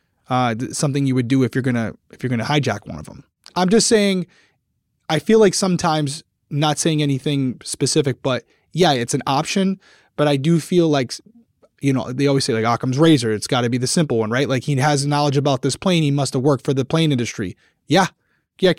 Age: 20-39